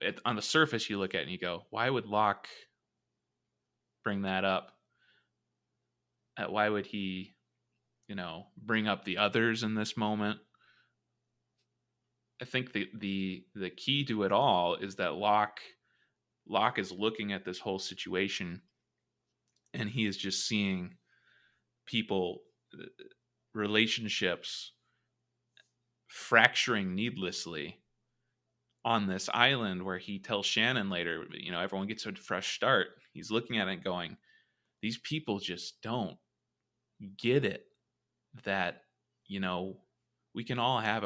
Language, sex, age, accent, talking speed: English, male, 20-39, American, 135 wpm